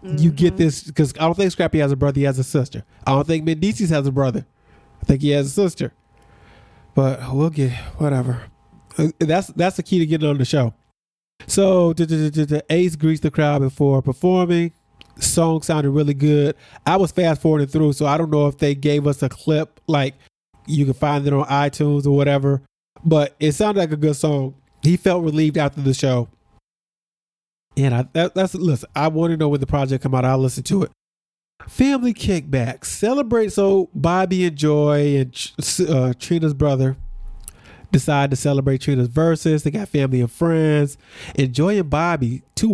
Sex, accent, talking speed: male, American, 190 wpm